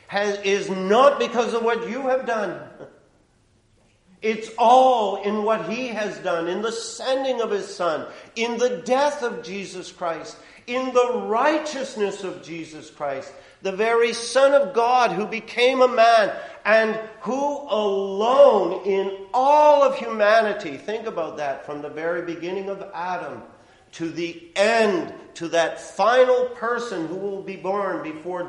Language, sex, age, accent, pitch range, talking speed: English, male, 50-69, American, 170-235 Hz, 145 wpm